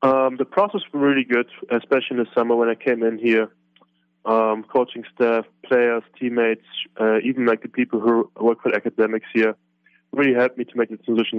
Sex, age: male, 20-39